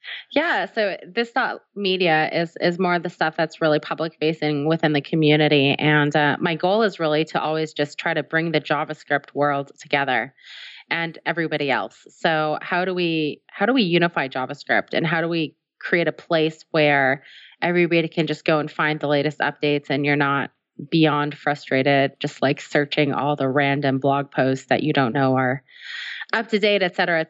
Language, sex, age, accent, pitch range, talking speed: English, female, 20-39, American, 150-180 Hz, 185 wpm